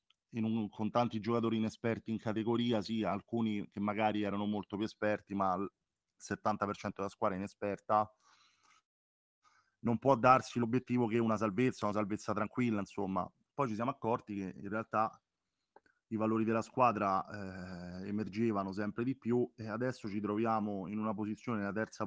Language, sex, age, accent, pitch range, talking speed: Italian, male, 30-49, native, 100-115 Hz, 155 wpm